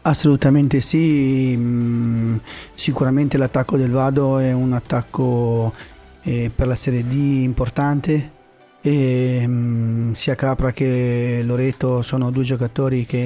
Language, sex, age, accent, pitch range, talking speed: Italian, male, 30-49, native, 125-140 Hz, 100 wpm